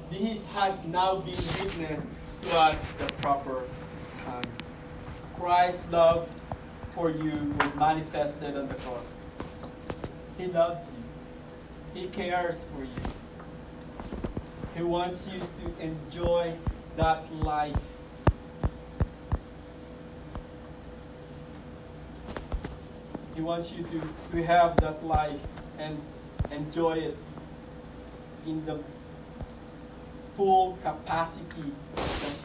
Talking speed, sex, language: 90 wpm, male, English